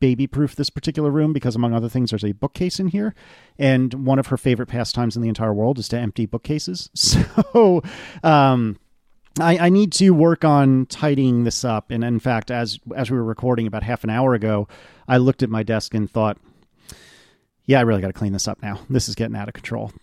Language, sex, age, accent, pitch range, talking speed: English, male, 40-59, American, 110-145 Hz, 220 wpm